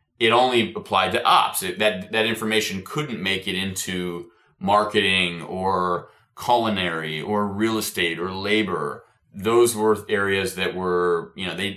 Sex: male